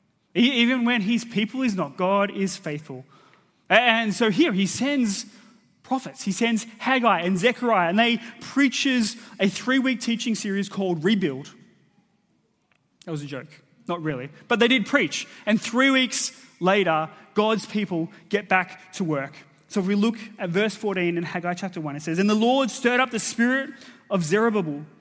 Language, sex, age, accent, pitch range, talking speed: English, male, 20-39, Australian, 165-225 Hz, 170 wpm